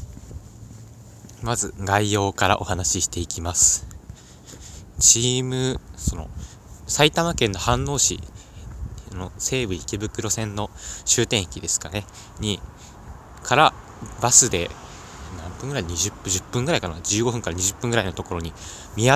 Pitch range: 90-115 Hz